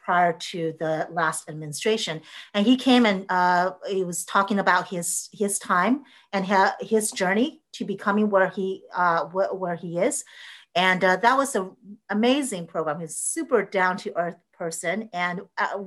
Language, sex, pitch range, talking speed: English, female, 165-205 Hz, 165 wpm